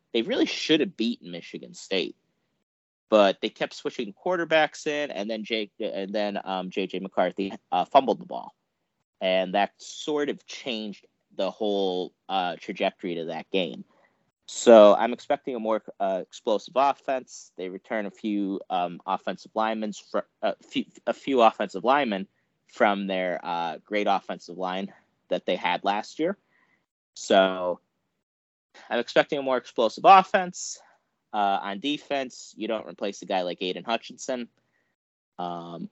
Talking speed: 150 wpm